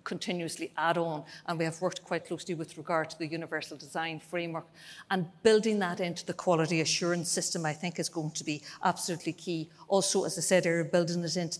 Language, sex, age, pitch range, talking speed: English, female, 50-69, 165-185 Hz, 205 wpm